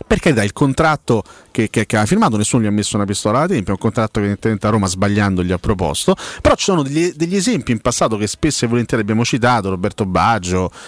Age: 30-49